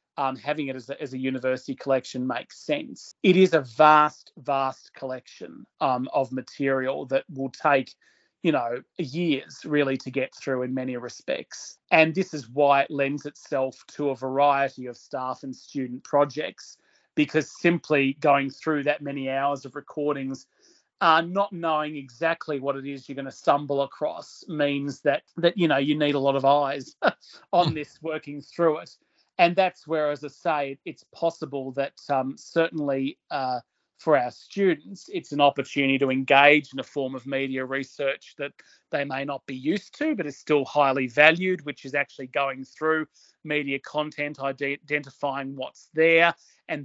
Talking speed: 170 wpm